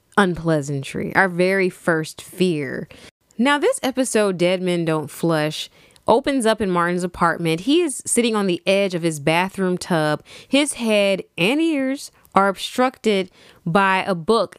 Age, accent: 20-39, American